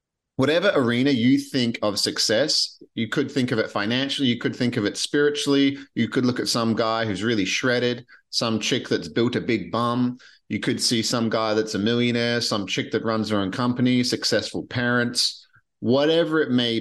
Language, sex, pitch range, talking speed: English, male, 110-140 Hz, 195 wpm